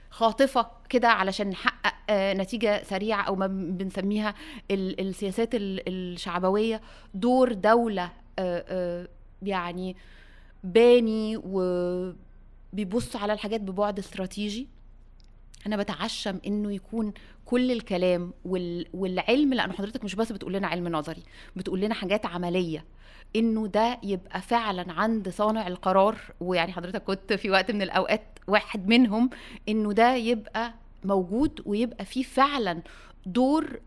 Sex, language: female, Arabic